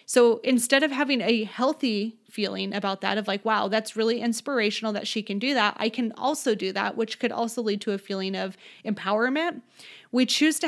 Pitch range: 215-270 Hz